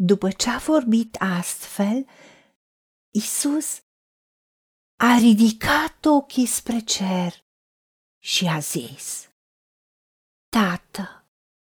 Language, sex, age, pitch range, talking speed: Romanian, female, 40-59, 200-275 Hz, 75 wpm